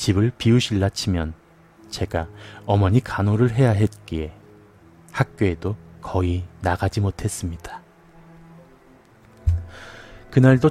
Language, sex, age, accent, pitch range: Korean, male, 30-49, native, 90-120 Hz